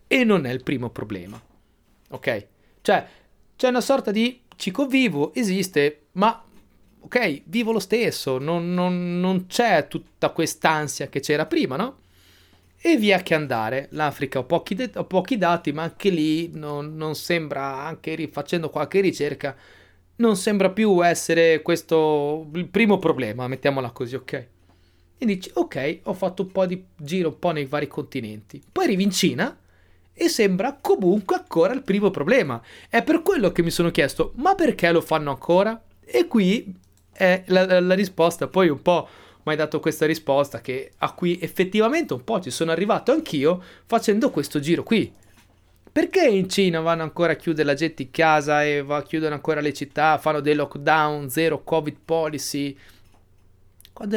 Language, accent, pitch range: Italian, native, 145-195 Hz